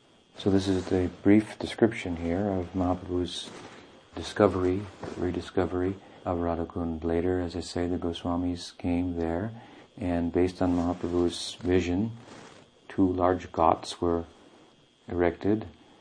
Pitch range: 85-100 Hz